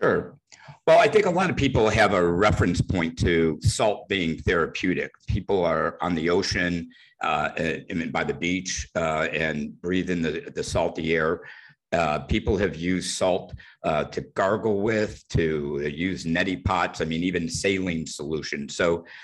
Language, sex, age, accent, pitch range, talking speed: English, male, 60-79, American, 80-100 Hz, 160 wpm